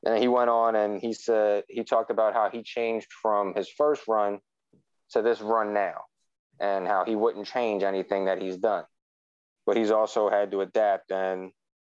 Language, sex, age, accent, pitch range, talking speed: English, male, 30-49, American, 100-120 Hz, 185 wpm